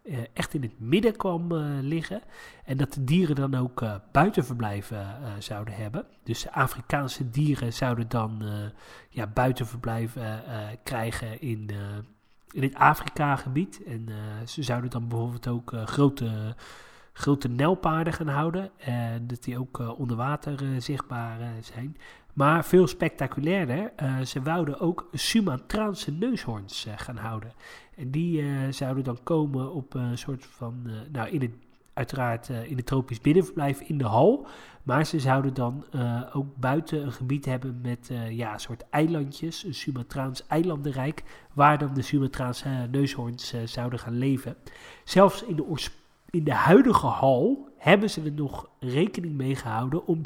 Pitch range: 120-150 Hz